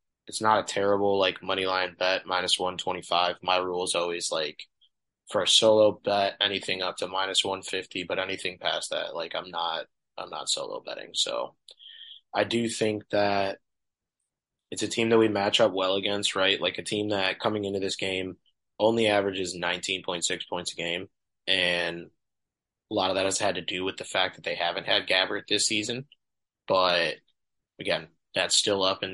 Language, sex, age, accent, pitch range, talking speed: English, male, 20-39, American, 95-110 Hz, 195 wpm